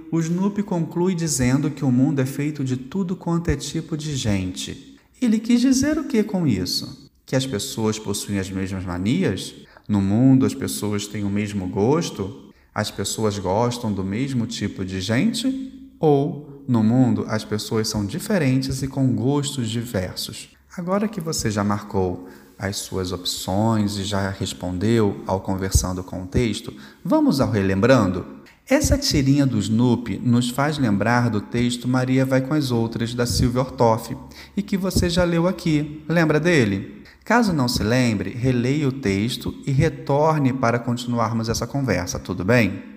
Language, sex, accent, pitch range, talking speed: Portuguese, male, Brazilian, 100-145 Hz, 160 wpm